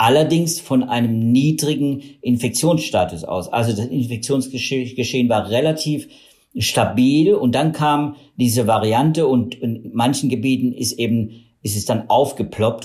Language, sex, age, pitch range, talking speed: German, male, 50-69, 115-130 Hz, 125 wpm